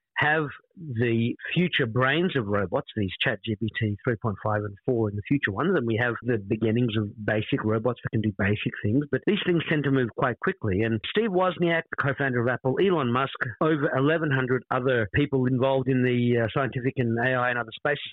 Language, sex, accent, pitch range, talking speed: English, male, Australian, 115-145 Hz, 190 wpm